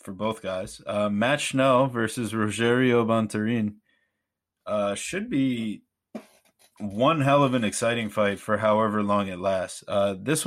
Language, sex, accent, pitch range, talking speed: English, male, American, 105-125 Hz, 145 wpm